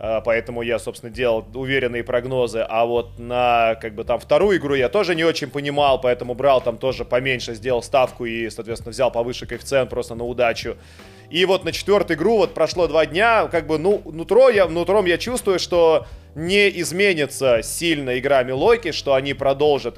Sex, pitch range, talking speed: male, 125-160 Hz, 175 wpm